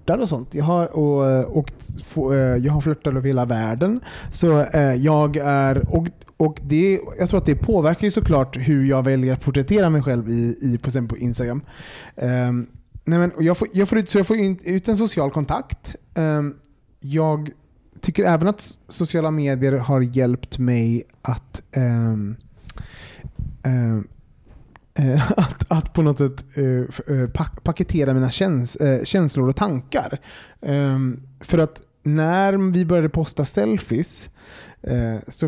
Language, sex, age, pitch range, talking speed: Swedish, male, 30-49, 130-165 Hz, 135 wpm